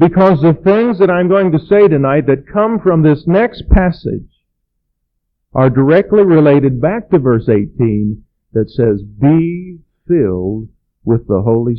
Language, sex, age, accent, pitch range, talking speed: English, male, 50-69, American, 100-155 Hz, 150 wpm